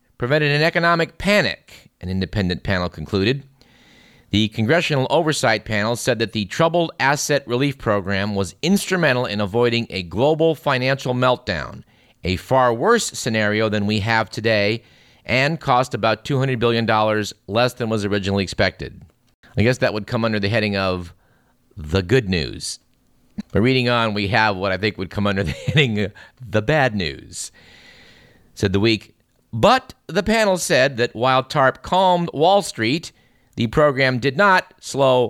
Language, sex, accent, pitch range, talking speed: English, male, American, 105-140 Hz, 155 wpm